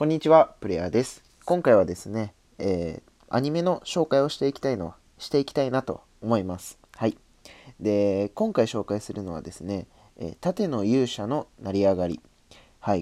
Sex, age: male, 20-39